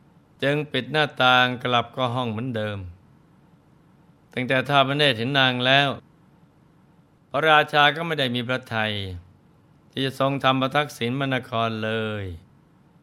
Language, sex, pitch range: Thai, male, 110-145 Hz